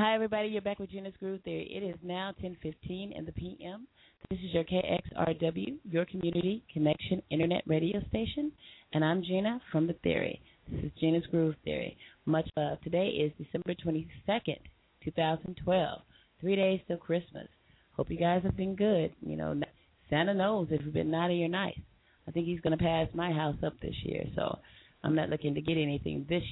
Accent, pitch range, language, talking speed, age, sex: American, 155-185 Hz, English, 185 wpm, 30-49, female